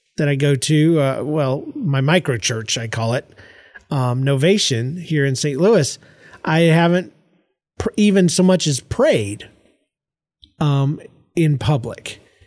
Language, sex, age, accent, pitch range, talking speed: English, male, 30-49, American, 140-175 Hz, 140 wpm